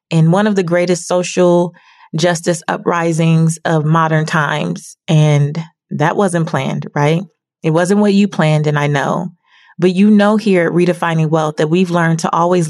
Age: 30-49